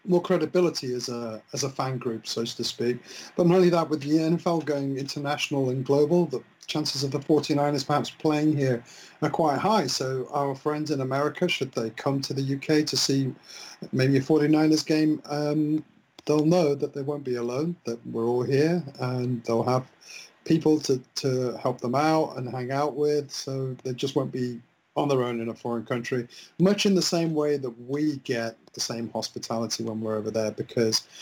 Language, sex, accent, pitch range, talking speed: English, male, British, 120-145 Hz, 195 wpm